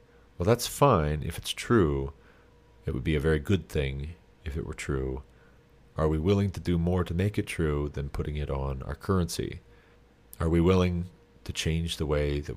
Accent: American